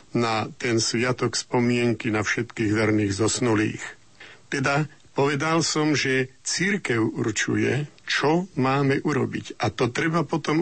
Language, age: Slovak, 50-69